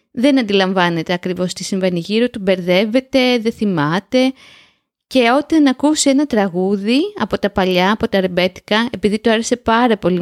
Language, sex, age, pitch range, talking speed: Greek, female, 20-39, 195-260 Hz, 155 wpm